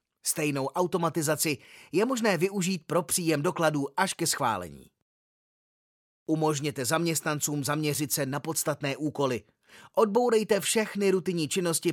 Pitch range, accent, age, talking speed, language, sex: 140-185 Hz, native, 30-49, 110 wpm, Czech, male